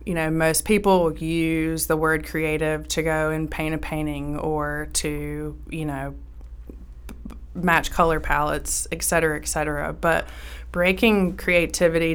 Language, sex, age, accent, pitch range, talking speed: English, female, 20-39, American, 145-165 Hz, 140 wpm